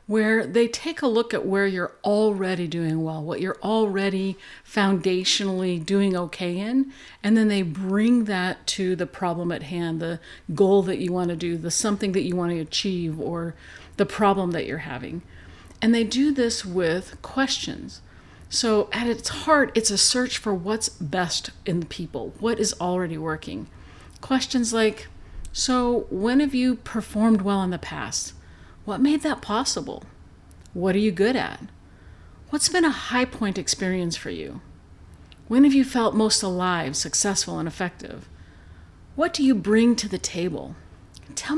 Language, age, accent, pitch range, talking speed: English, 50-69, American, 170-225 Hz, 165 wpm